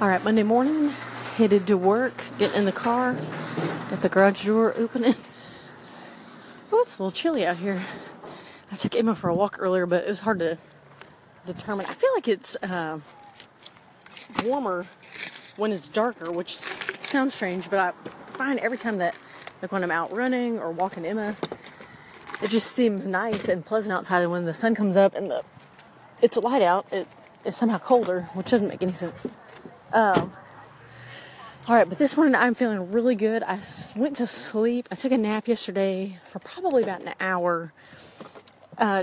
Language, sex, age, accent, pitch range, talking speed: English, female, 30-49, American, 175-225 Hz, 175 wpm